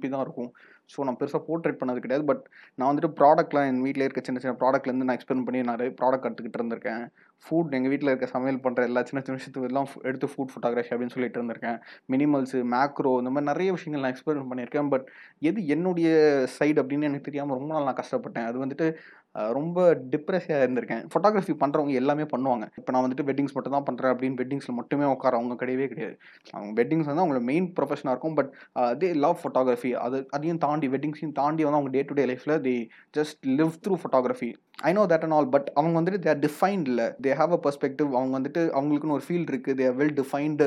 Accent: native